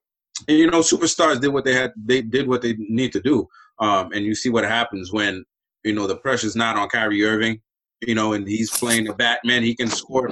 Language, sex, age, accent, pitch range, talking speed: English, male, 30-49, American, 100-120 Hz, 235 wpm